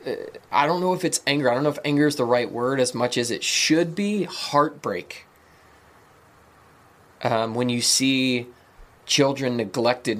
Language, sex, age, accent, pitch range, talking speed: English, male, 20-39, American, 110-125 Hz, 165 wpm